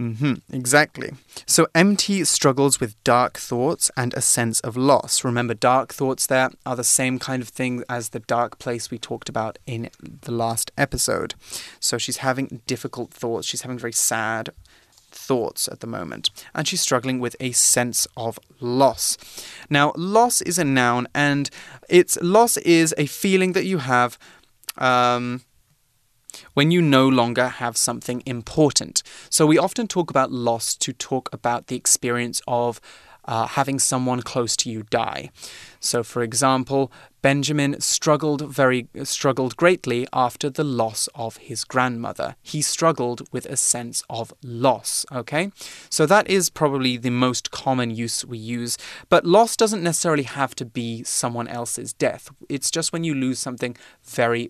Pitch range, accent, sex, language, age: 120-145 Hz, British, male, Chinese, 20-39